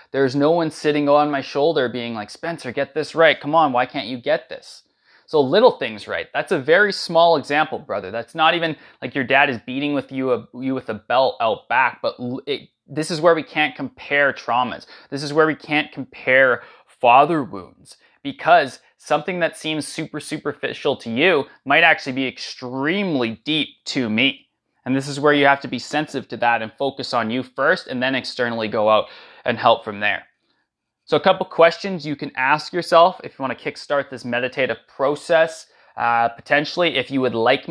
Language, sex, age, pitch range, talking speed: English, male, 20-39, 120-150 Hz, 195 wpm